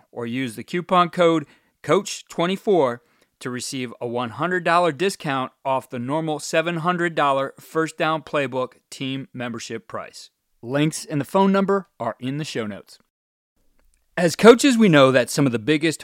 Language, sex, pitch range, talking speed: English, male, 130-190 Hz, 150 wpm